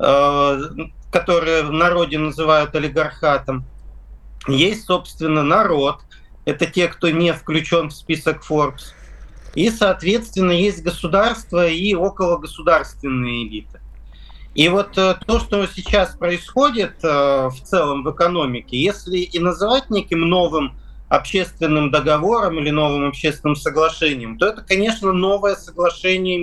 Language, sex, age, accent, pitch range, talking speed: Russian, male, 40-59, native, 140-180 Hz, 110 wpm